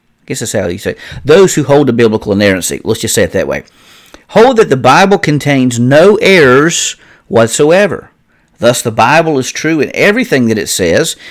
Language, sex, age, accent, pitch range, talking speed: English, male, 50-69, American, 125-160 Hz, 185 wpm